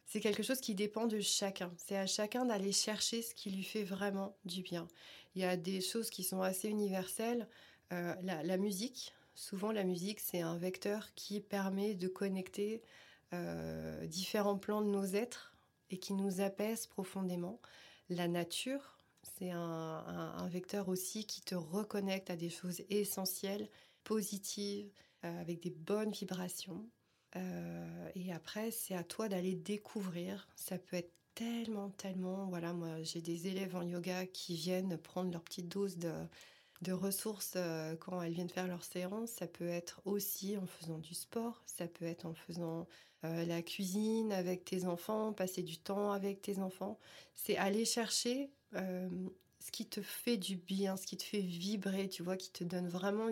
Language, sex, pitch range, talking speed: French, female, 180-205 Hz, 175 wpm